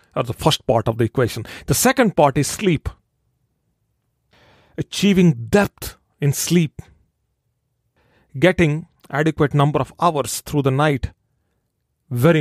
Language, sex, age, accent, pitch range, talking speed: English, male, 40-59, Indian, 120-150 Hz, 120 wpm